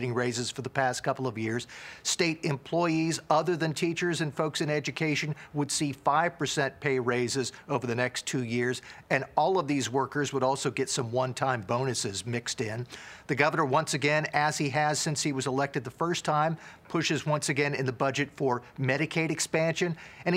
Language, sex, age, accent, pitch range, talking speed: English, male, 50-69, American, 130-160 Hz, 190 wpm